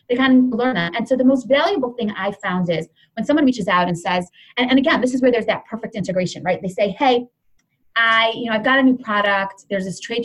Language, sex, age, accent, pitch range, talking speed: English, female, 20-39, American, 195-255 Hz, 265 wpm